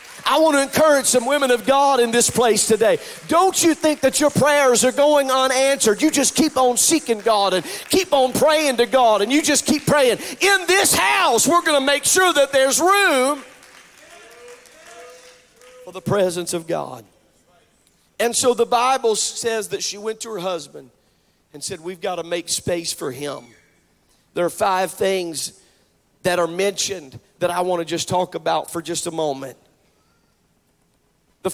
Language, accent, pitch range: English, American, 180-255 Hz